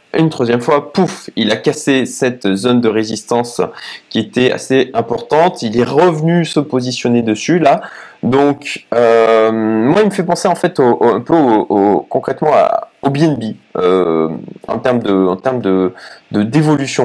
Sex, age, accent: male, 20-39, French